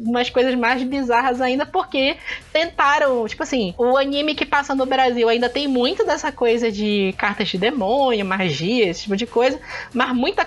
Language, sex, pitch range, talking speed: Portuguese, female, 215-270 Hz, 180 wpm